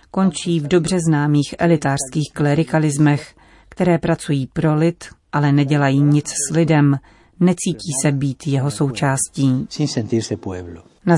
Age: 40-59